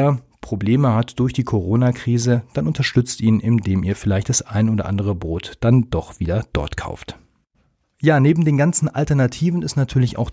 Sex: male